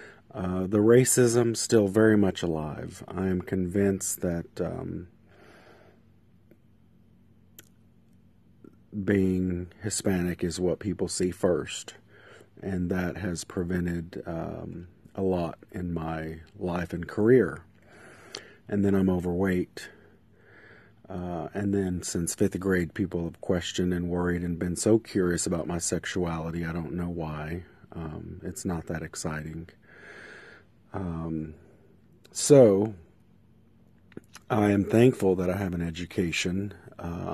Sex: male